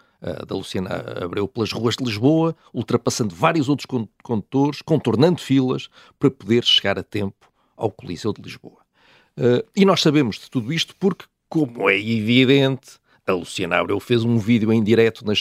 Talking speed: 160 wpm